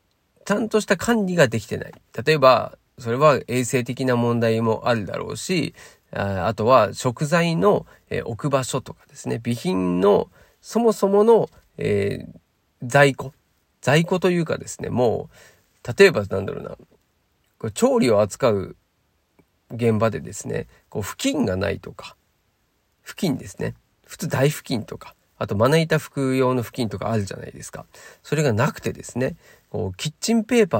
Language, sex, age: Japanese, male, 40-59